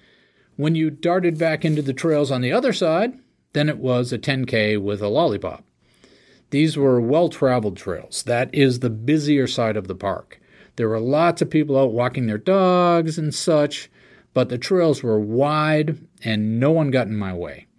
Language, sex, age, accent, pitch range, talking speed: English, male, 40-59, American, 110-155 Hz, 180 wpm